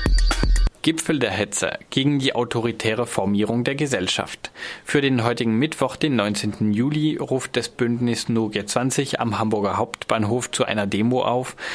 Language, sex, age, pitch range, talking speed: German, male, 20-39, 105-125 Hz, 145 wpm